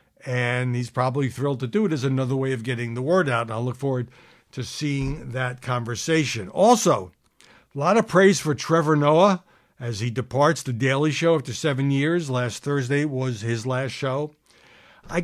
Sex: male